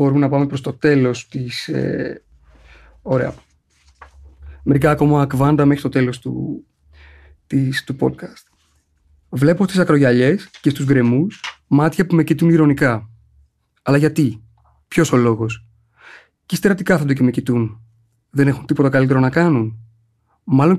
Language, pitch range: Greek, 115-155 Hz